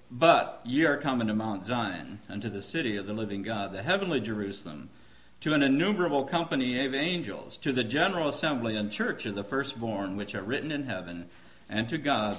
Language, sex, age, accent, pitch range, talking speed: English, male, 50-69, American, 105-145 Hz, 195 wpm